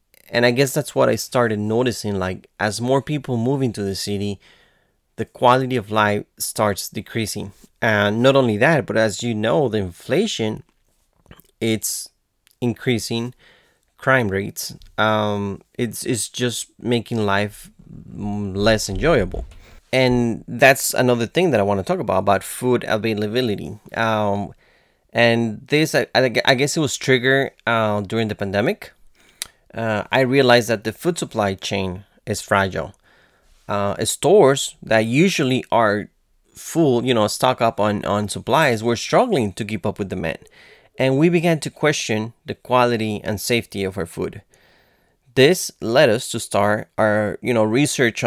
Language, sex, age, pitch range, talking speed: English, male, 30-49, 105-130 Hz, 150 wpm